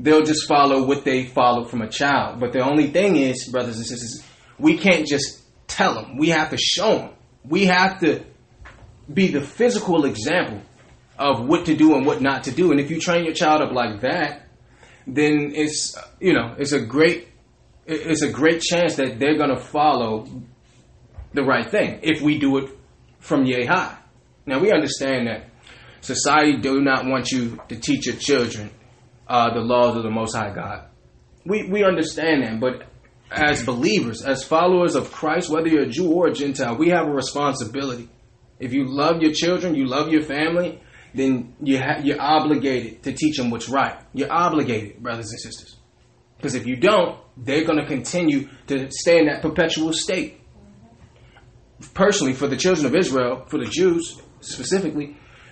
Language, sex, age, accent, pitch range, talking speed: English, male, 20-39, American, 125-155 Hz, 180 wpm